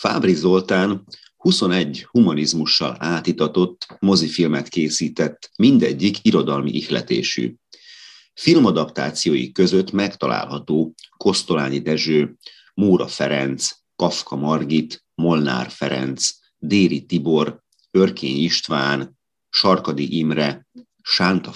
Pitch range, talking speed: 75-90 Hz, 80 wpm